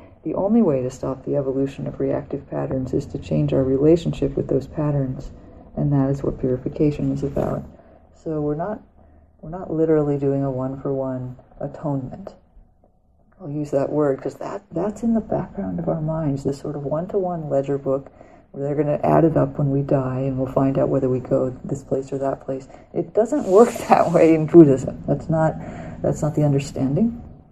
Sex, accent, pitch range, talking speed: female, American, 135-160 Hz, 205 wpm